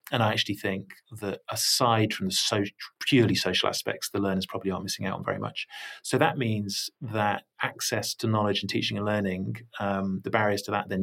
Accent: British